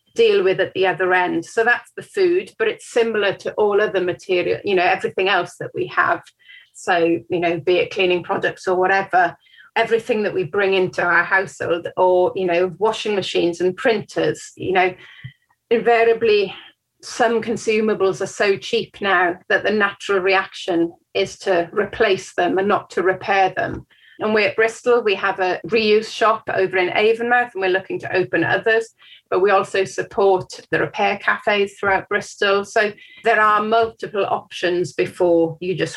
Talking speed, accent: 175 wpm, British